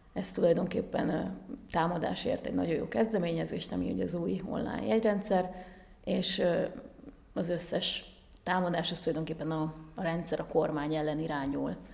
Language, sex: Hungarian, female